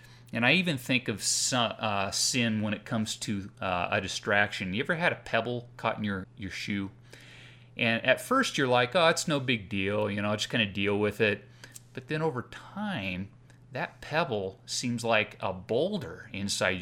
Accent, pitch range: American, 105-125 Hz